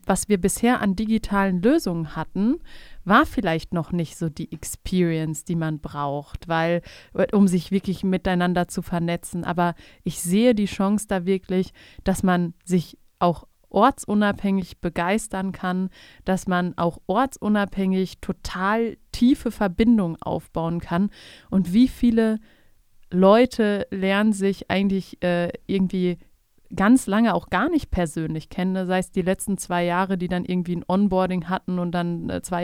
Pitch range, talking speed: 175-200 Hz, 145 wpm